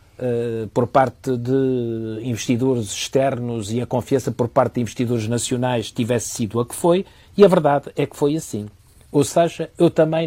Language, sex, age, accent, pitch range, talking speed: Portuguese, male, 50-69, Portuguese, 105-145 Hz, 170 wpm